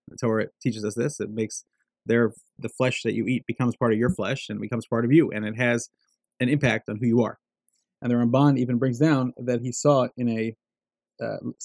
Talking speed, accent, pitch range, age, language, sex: 215 wpm, American, 110-130 Hz, 30-49, English, male